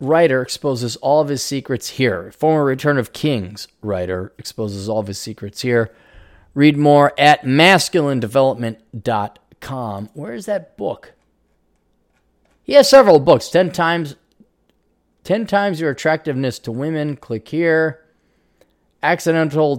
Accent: American